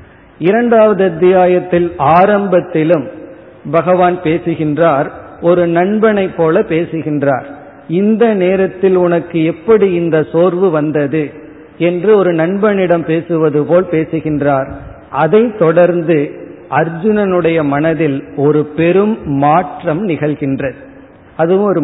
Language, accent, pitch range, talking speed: Tamil, native, 150-185 Hz, 90 wpm